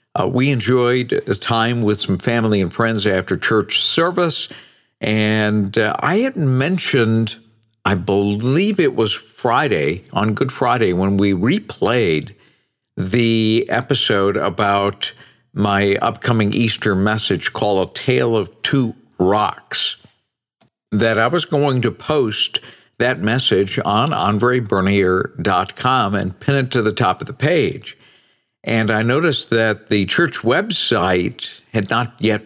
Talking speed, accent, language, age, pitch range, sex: 130 wpm, American, English, 50-69, 100-130 Hz, male